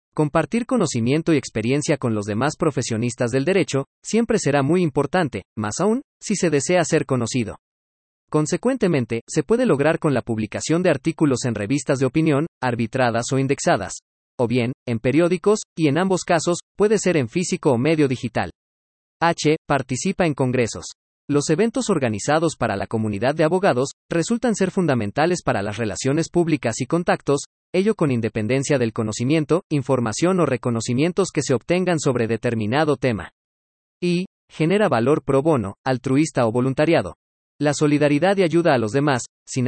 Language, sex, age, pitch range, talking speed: Spanish, male, 40-59, 120-170 Hz, 155 wpm